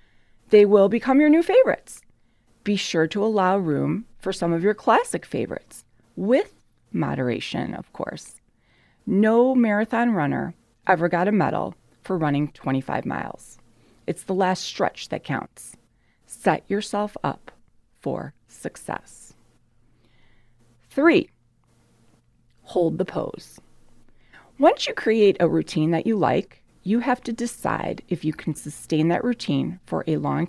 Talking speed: 135 wpm